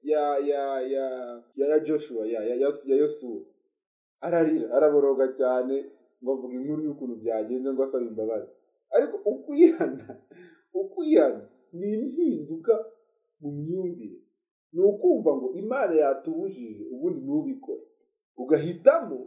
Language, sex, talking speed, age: English, male, 80 wpm, 30-49